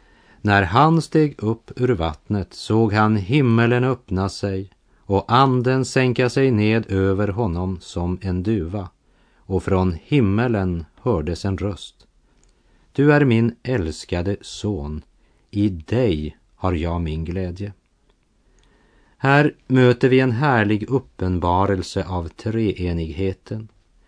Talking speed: 115 wpm